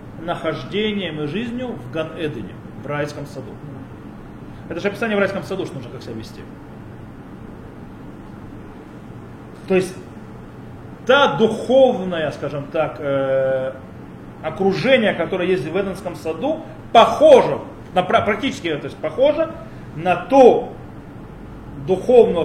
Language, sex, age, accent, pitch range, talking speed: Russian, male, 30-49, native, 150-210 Hz, 110 wpm